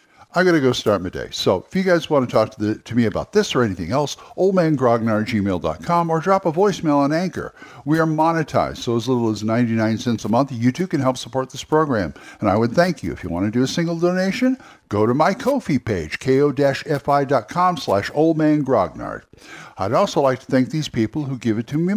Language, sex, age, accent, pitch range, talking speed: English, male, 60-79, American, 115-160 Hz, 225 wpm